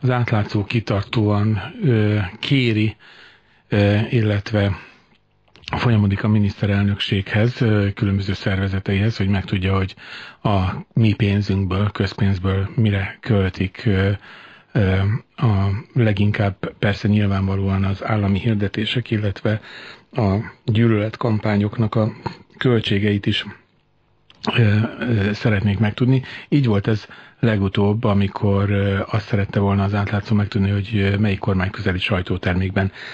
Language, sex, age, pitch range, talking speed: Hungarian, male, 40-59, 100-110 Hz, 100 wpm